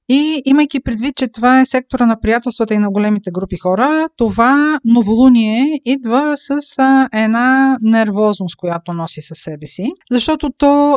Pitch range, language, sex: 210-260 Hz, Bulgarian, female